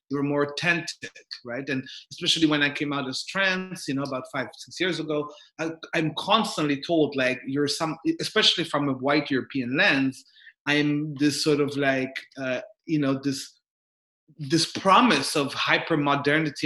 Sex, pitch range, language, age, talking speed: male, 135-170 Hz, English, 30-49, 160 wpm